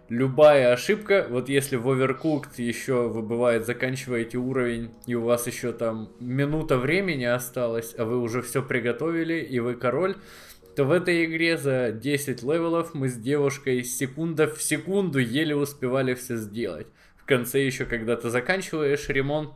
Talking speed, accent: 155 wpm, native